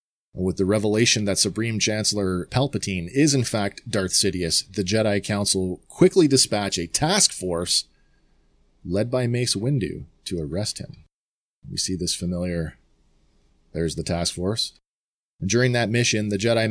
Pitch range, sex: 95-125 Hz, male